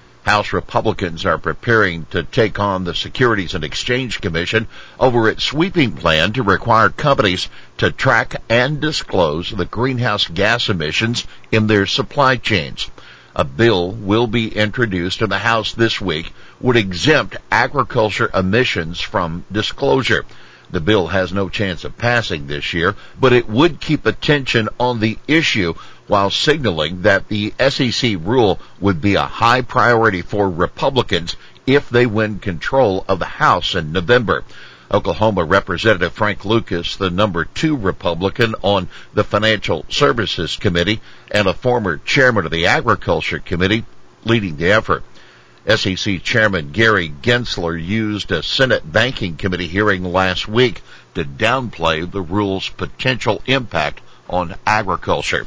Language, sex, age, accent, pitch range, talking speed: English, male, 60-79, American, 90-115 Hz, 140 wpm